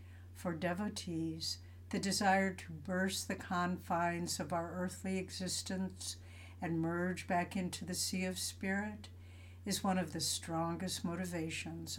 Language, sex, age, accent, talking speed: English, female, 60-79, American, 130 wpm